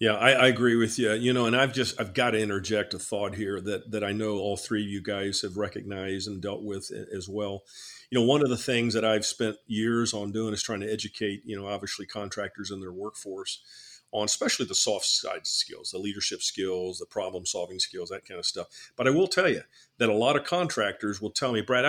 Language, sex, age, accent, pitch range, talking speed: English, male, 50-69, American, 100-125 Hz, 240 wpm